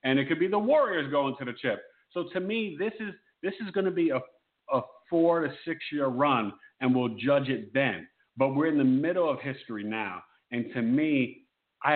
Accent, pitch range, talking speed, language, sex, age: American, 115-145 Hz, 220 wpm, English, male, 50-69